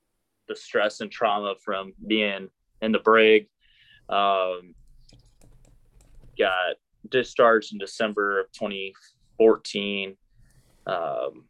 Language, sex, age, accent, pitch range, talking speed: English, male, 20-39, American, 100-130 Hz, 90 wpm